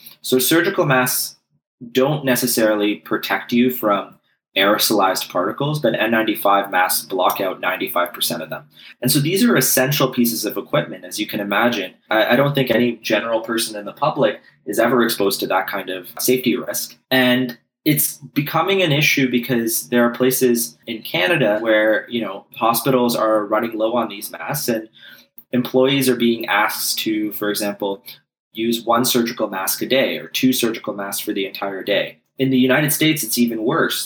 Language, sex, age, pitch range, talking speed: English, male, 20-39, 110-130 Hz, 175 wpm